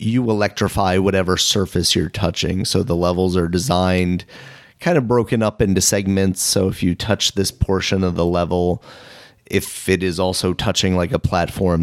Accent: American